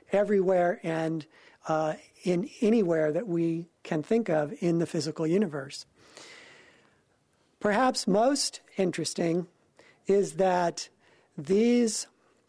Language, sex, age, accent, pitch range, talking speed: English, male, 50-69, American, 165-205 Hz, 95 wpm